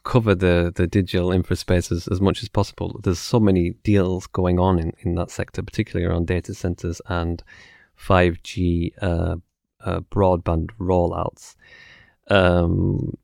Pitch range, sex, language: 85-95 Hz, male, English